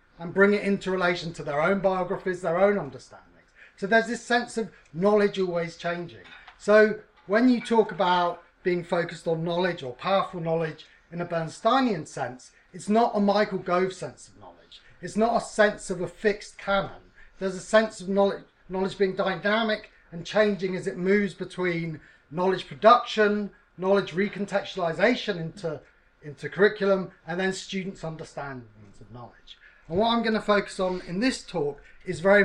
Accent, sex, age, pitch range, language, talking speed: British, male, 40-59, 160-205 Hz, English, 170 wpm